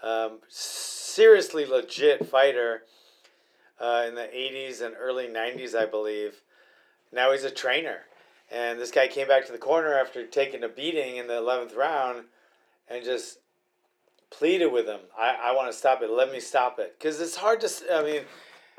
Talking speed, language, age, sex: 170 wpm, English, 40-59, male